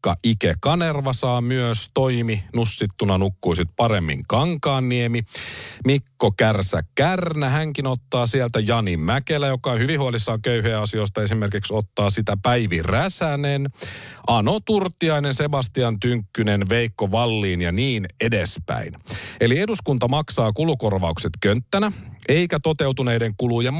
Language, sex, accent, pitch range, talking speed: Finnish, male, native, 110-140 Hz, 110 wpm